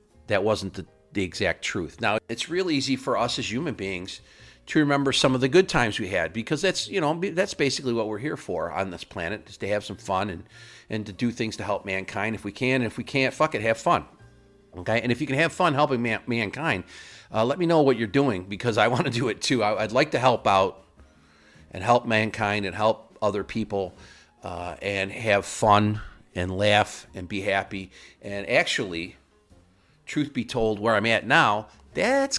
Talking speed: 215 wpm